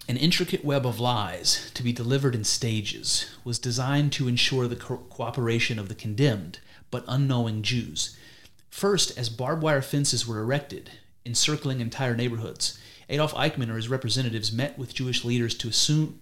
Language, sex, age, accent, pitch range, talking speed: English, male, 30-49, American, 115-145 Hz, 165 wpm